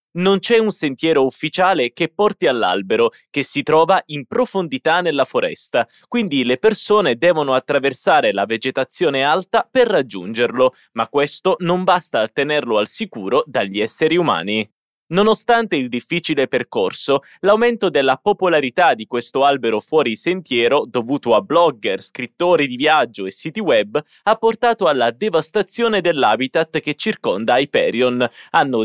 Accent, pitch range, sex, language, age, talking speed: Italian, 125-195 Hz, male, Portuguese, 20-39, 135 wpm